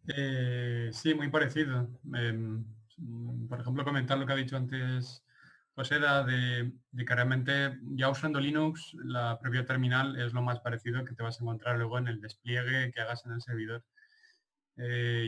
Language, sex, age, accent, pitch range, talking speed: Spanish, male, 20-39, Spanish, 120-140 Hz, 175 wpm